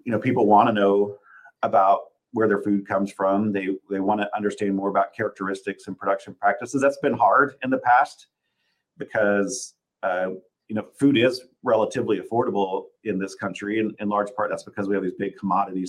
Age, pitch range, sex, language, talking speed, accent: 40-59, 100-120 Hz, male, English, 195 wpm, American